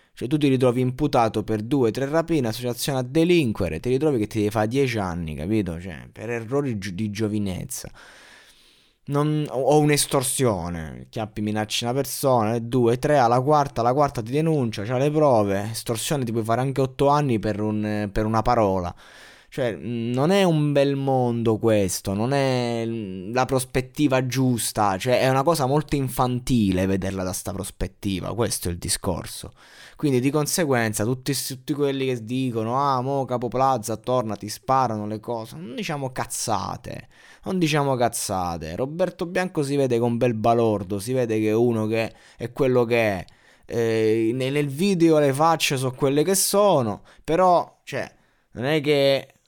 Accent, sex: native, male